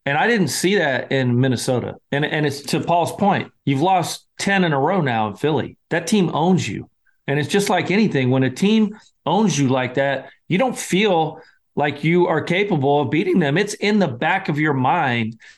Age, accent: 40-59, American